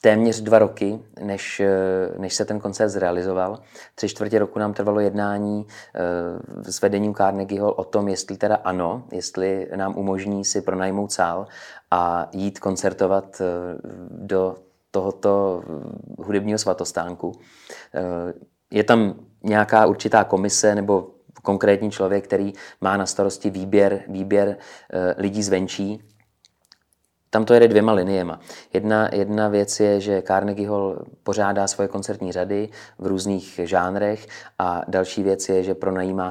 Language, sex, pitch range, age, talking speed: Czech, male, 95-105 Hz, 20-39, 130 wpm